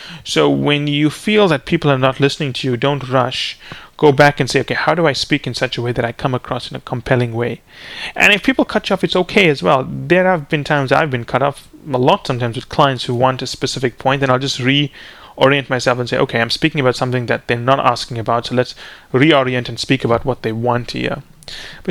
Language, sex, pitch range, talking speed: English, male, 125-150 Hz, 245 wpm